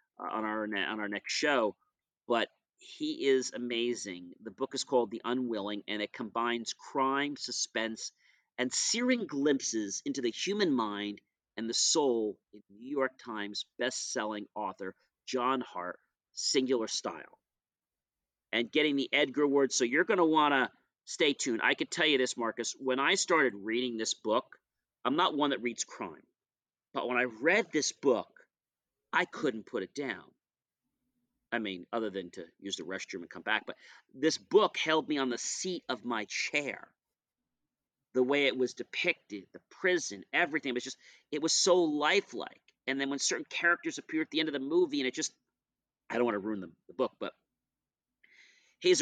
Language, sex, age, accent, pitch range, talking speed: English, male, 40-59, American, 110-160 Hz, 180 wpm